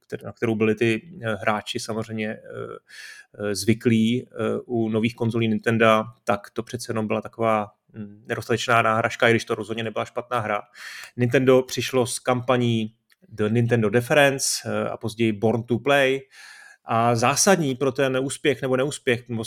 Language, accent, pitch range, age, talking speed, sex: Czech, native, 110-135 Hz, 30-49, 140 wpm, male